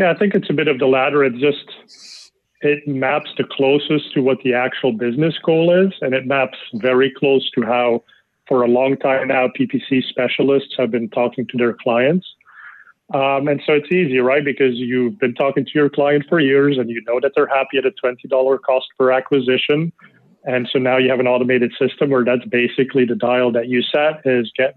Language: English